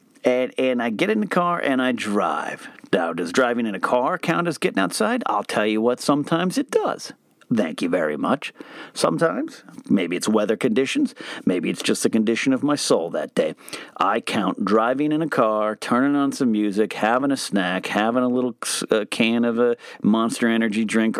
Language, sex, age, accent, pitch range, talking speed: English, male, 40-59, American, 110-180 Hz, 190 wpm